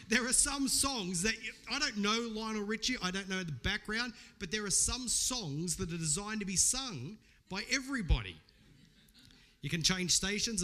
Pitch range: 155-215 Hz